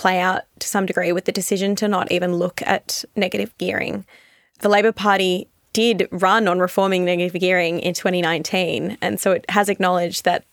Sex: female